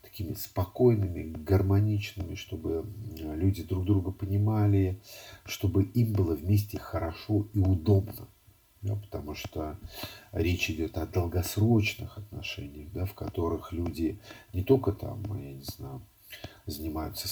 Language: Russian